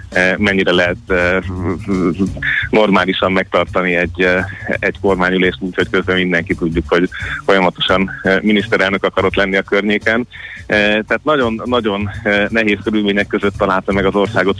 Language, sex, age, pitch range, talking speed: Hungarian, male, 30-49, 95-105 Hz, 110 wpm